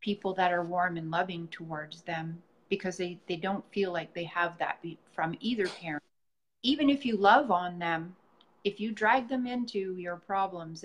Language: English